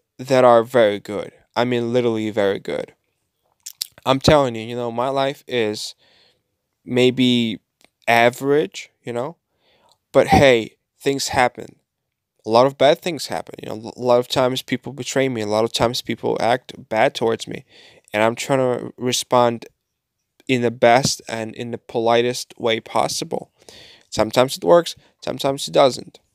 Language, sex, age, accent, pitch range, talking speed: English, male, 20-39, American, 115-135 Hz, 155 wpm